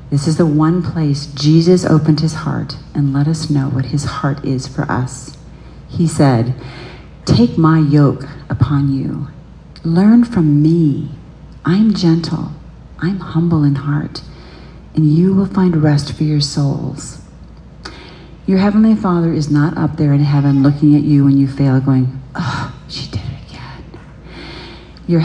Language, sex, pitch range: English, female, 135-155 Hz